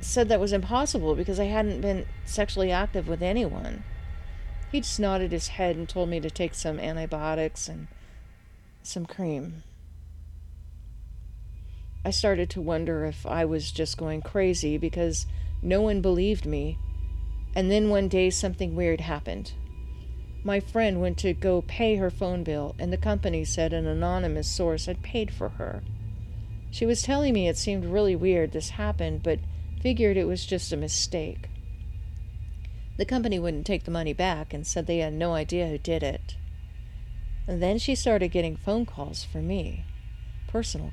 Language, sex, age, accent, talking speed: English, female, 40-59, American, 165 wpm